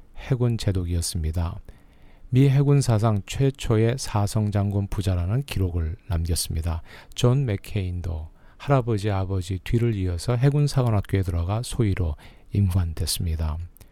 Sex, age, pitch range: male, 40-59, 95-120 Hz